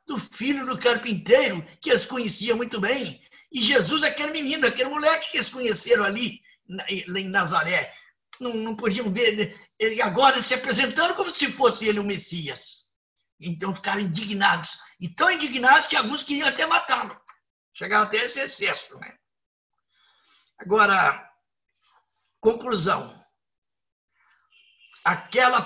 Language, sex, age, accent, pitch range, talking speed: Portuguese, male, 50-69, Brazilian, 200-255 Hz, 130 wpm